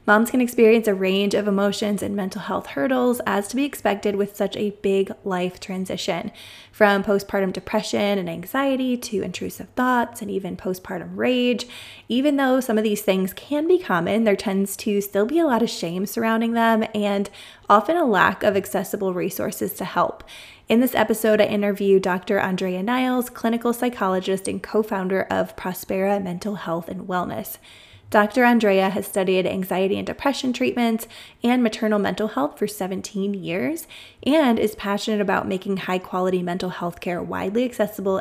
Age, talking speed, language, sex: 20-39, 165 wpm, English, female